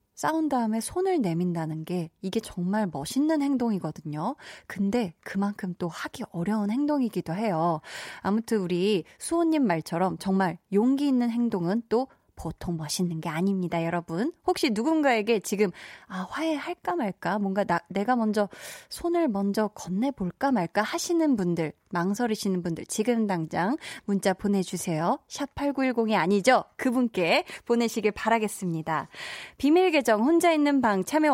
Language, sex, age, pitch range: Korean, female, 20-39, 190-280 Hz